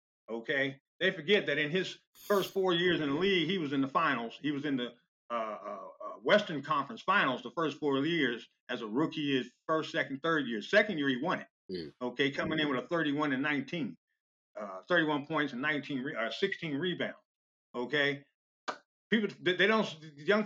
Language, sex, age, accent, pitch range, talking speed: English, male, 50-69, American, 135-180 Hz, 185 wpm